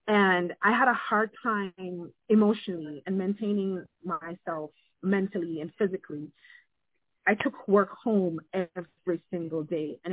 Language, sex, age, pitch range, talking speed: English, female, 30-49, 170-210 Hz, 125 wpm